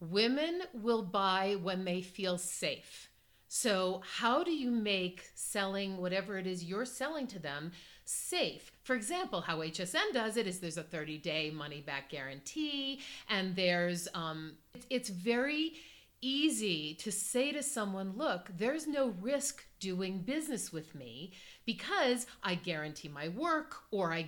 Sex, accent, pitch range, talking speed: female, American, 170-230 Hz, 145 wpm